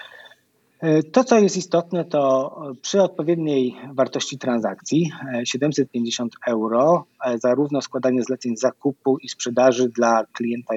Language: Polish